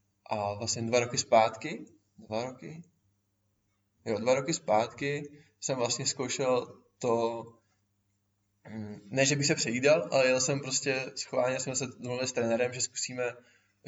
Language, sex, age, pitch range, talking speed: Czech, male, 20-39, 110-130 Hz, 145 wpm